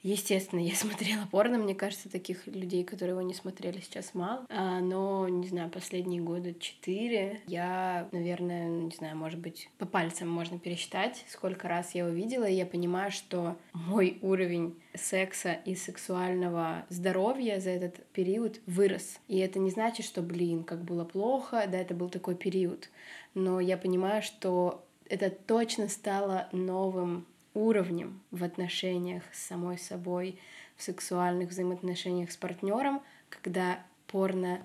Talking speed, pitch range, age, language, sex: 145 wpm, 180-205 Hz, 20-39, Russian, female